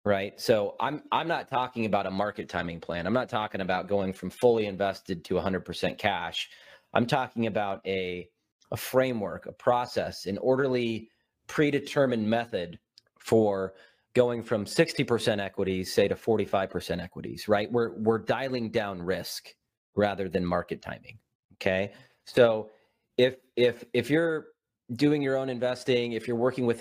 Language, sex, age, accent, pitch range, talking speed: English, male, 30-49, American, 100-125 Hz, 150 wpm